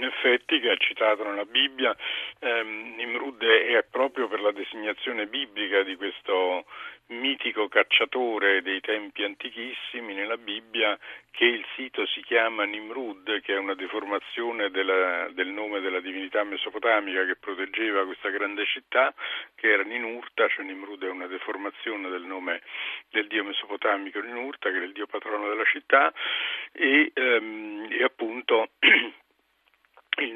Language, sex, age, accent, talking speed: Italian, male, 50-69, native, 135 wpm